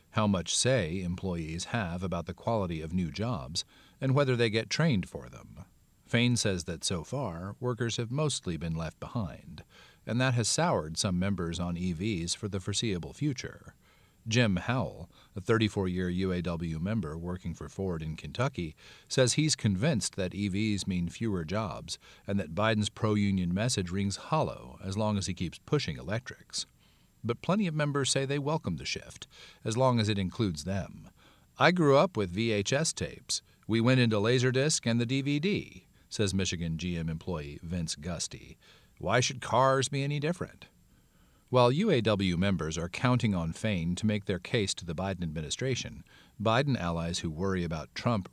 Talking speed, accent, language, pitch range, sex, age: 170 wpm, American, English, 90-120 Hz, male, 40-59